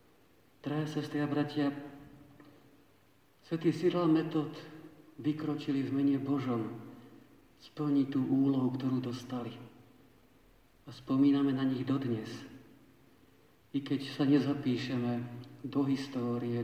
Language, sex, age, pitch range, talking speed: Slovak, male, 50-69, 125-145 Hz, 95 wpm